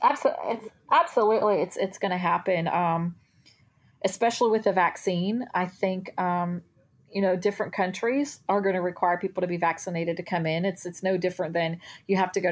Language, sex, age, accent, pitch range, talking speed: English, female, 30-49, American, 165-200 Hz, 180 wpm